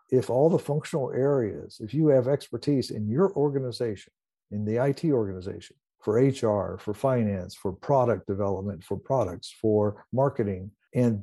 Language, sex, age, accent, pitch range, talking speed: English, male, 60-79, American, 105-135 Hz, 150 wpm